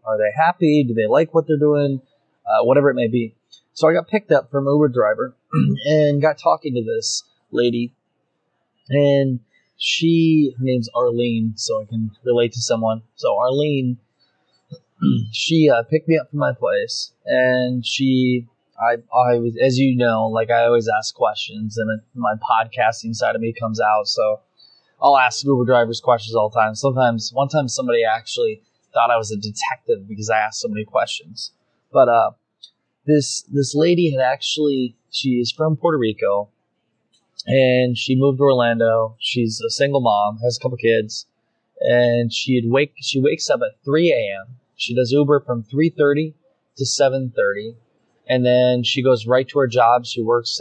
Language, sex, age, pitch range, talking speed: English, male, 20-39, 115-150 Hz, 175 wpm